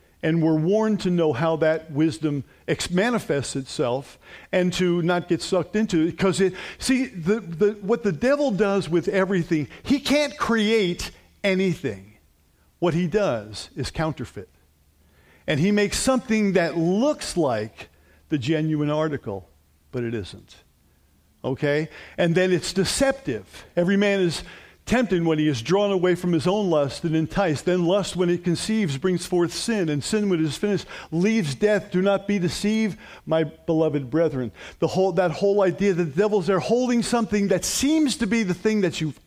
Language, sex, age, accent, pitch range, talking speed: English, male, 50-69, American, 145-200 Hz, 175 wpm